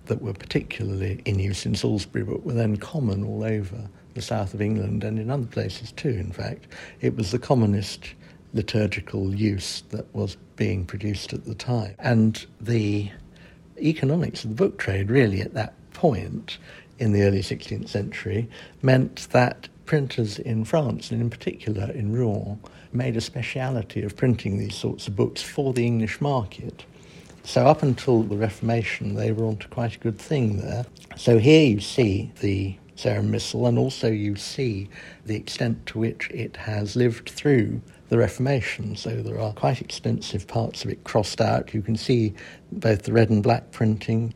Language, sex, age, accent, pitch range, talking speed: English, male, 60-79, British, 105-120 Hz, 175 wpm